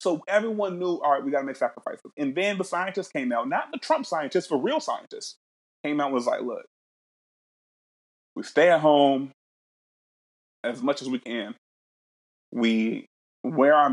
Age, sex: 30-49, male